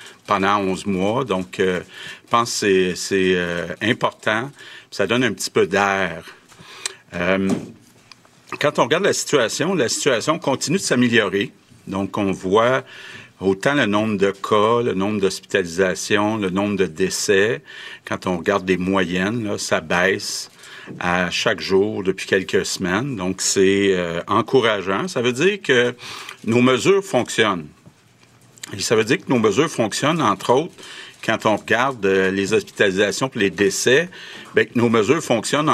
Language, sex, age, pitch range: French, male, 50-69, 95-115 Hz